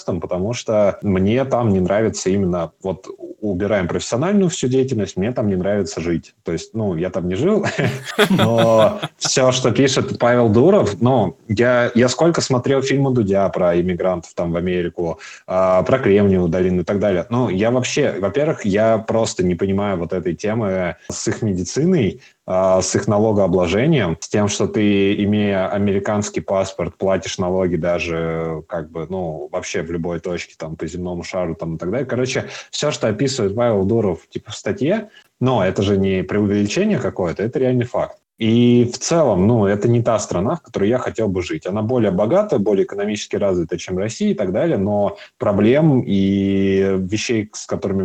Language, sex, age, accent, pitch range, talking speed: Russian, male, 20-39, native, 95-120 Hz, 175 wpm